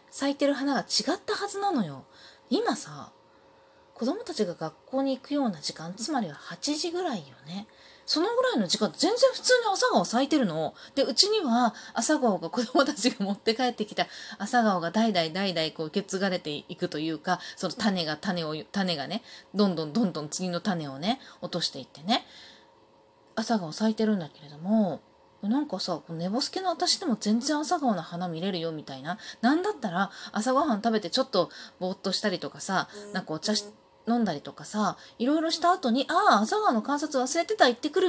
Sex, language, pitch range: female, Japanese, 180-280 Hz